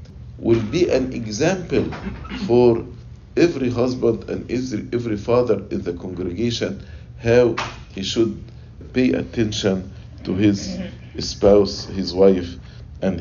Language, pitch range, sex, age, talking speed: English, 100-125 Hz, male, 50-69, 110 wpm